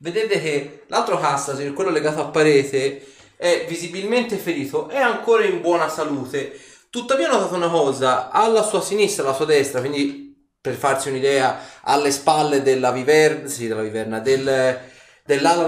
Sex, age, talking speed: male, 20-39, 150 wpm